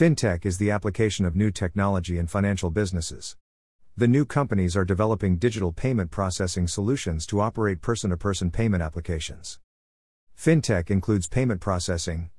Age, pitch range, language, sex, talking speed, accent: 50-69, 90-115 Hz, English, male, 135 wpm, American